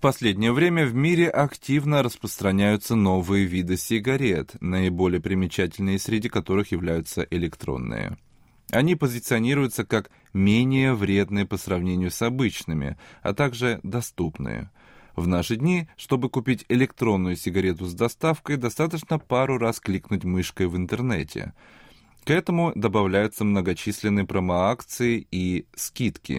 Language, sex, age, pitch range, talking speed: Russian, male, 20-39, 95-130 Hz, 115 wpm